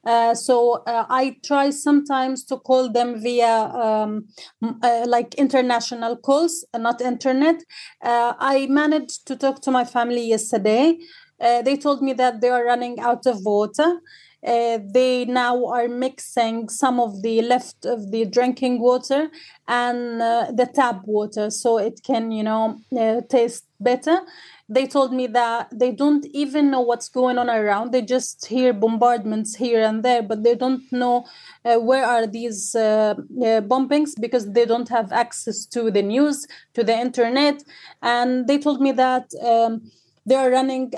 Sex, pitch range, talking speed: female, 230-265 Hz, 165 wpm